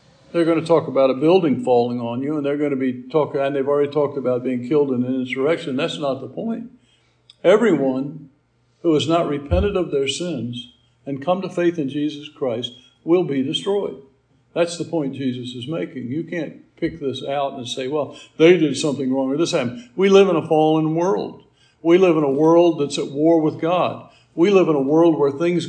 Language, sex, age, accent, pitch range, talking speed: English, male, 60-79, American, 135-170 Hz, 215 wpm